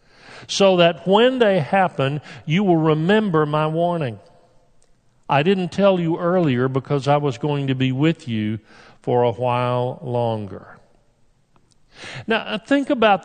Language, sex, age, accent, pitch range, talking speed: English, male, 50-69, American, 130-170 Hz, 135 wpm